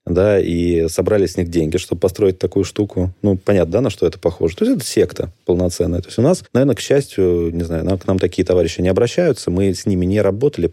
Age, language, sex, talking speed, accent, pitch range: 20-39, Russian, male, 235 wpm, native, 85-105 Hz